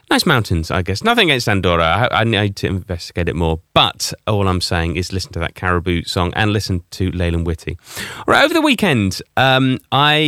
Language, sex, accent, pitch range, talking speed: English, male, British, 90-130 Hz, 205 wpm